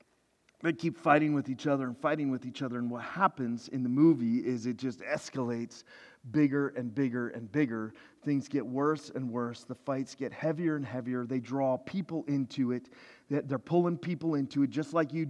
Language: English